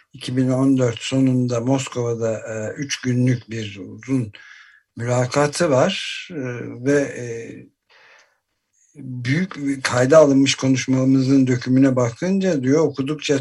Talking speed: 85 wpm